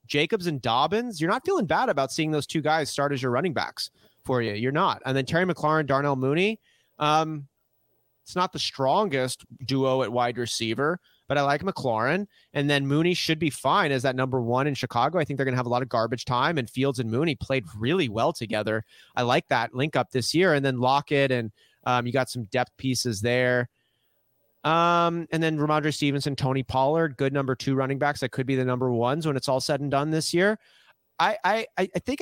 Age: 30-49